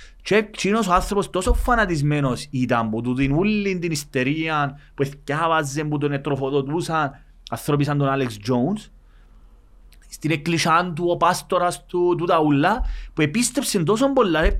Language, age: Greek, 30-49